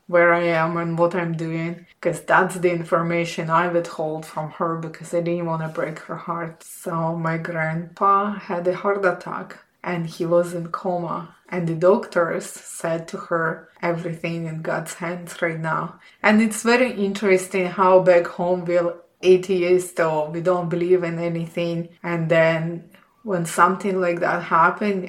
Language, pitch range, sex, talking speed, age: English, 170-185 Hz, female, 170 wpm, 20-39